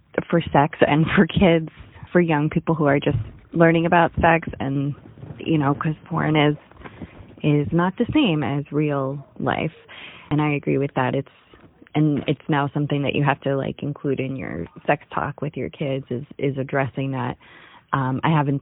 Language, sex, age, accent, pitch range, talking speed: English, female, 20-39, American, 145-175 Hz, 185 wpm